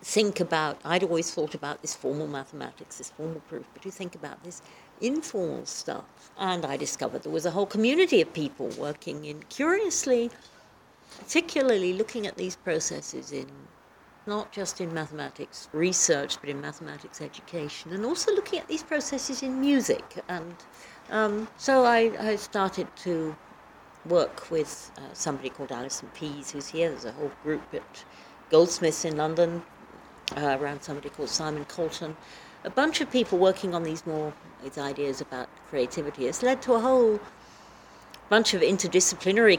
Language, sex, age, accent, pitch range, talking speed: English, female, 60-79, British, 150-215 Hz, 160 wpm